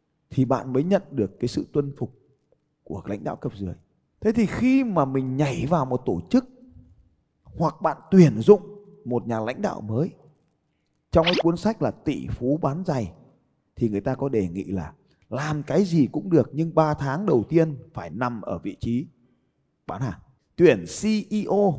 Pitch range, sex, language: 125-195 Hz, male, Vietnamese